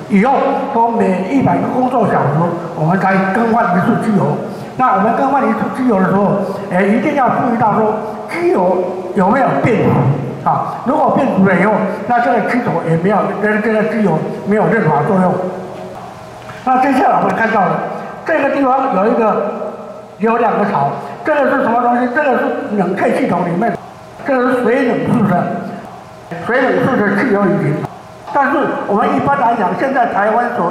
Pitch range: 195-245 Hz